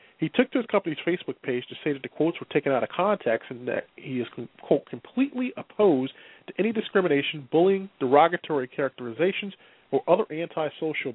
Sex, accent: male, American